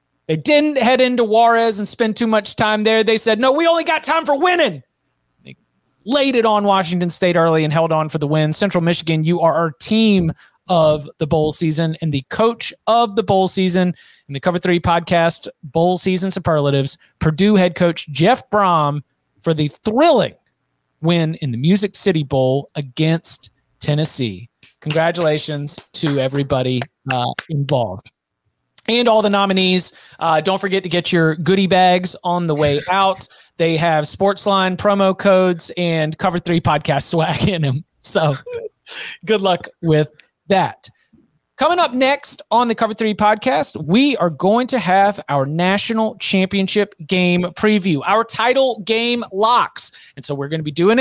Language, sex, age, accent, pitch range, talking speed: English, male, 30-49, American, 160-215 Hz, 165 wpm